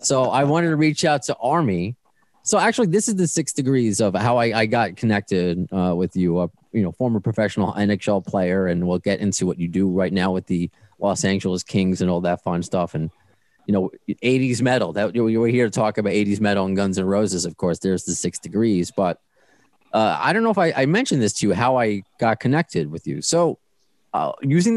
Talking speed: 235 wpm